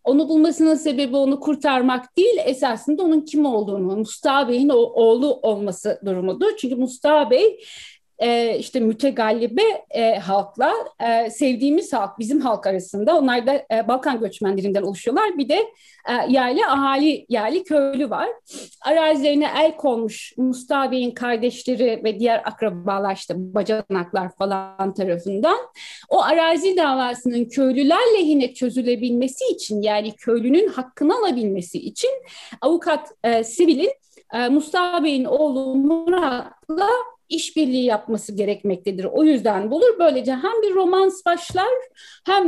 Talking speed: 115 wpm